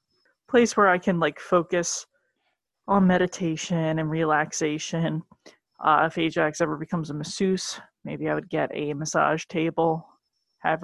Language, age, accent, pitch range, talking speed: English, 30-49, American, 160-215 Hz, 140 wpm